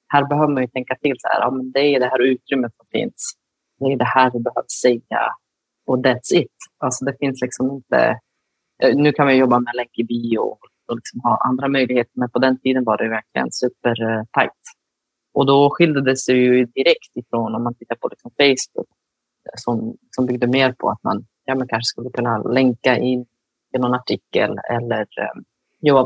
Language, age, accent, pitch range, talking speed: Swedish, 30-49, native, 125-140 Hz, 195 wpm